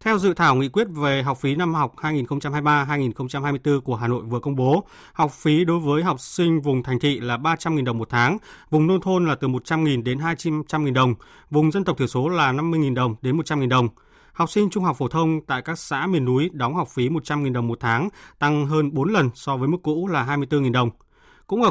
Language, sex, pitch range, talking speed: Vietnamese, male, 130-165 Hz, 225 wpm